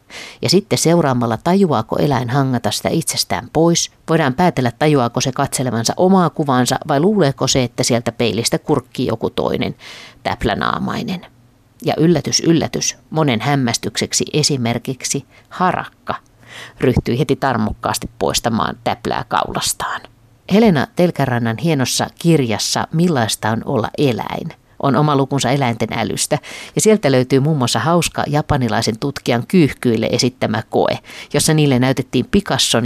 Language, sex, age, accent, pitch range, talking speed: Finnish, female, 50-69, native, 120-155 Hz, 120 wpm